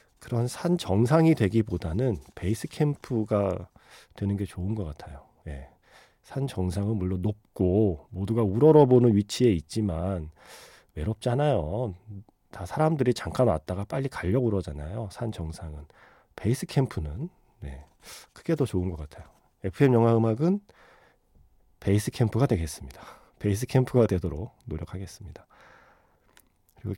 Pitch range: 90-125 Hz